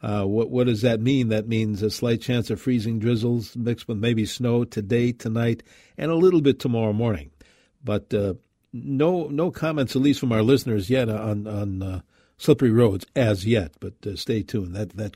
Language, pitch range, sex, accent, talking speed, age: English, 105-130 Hz, male, American, 200 wpm, 50-69